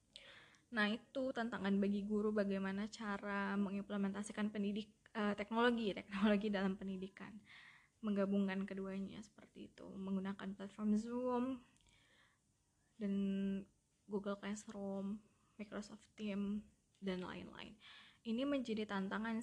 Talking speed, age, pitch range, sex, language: 95 wpm, 20-39, 195-225 Hz, female, Indonesian